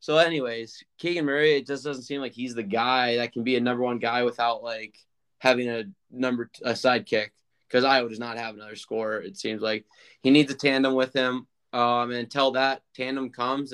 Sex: male